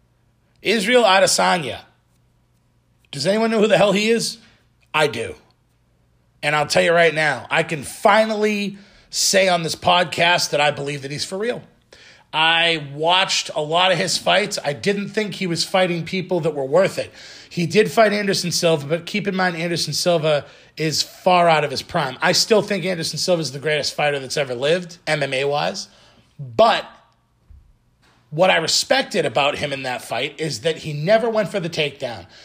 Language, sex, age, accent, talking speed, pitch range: English, male, 30-49, American, 180 wpm, 155-200 Hz